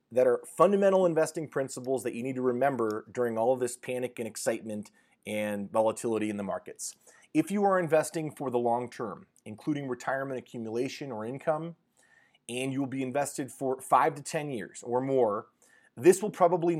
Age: 30-49